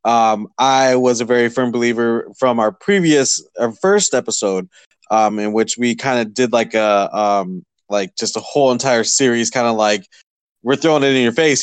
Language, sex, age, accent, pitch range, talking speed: English, male, 20-39, American, 105-130 Hz, 195 wpm